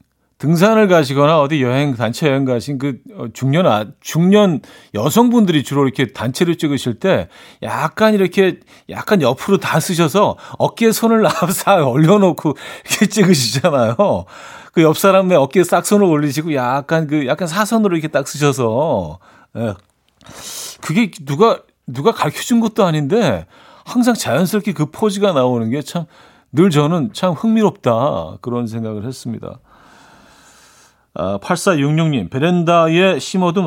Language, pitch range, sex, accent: Korean, 130-185 Hz, male, native